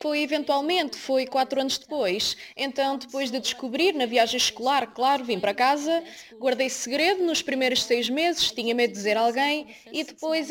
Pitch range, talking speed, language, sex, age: 240-310 Hz, 175 wpm, Portuguese, female, 20-39